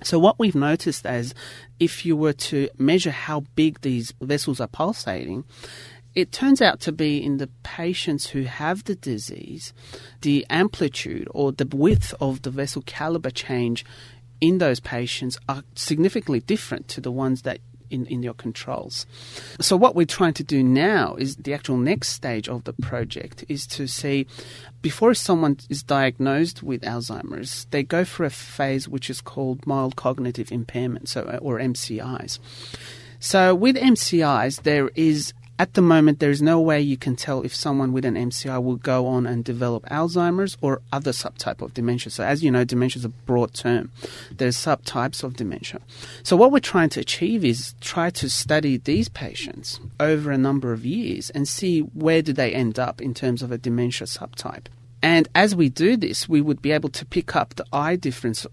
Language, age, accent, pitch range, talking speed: English, 30-49, Australian, 120-150 Hz, 185 wpm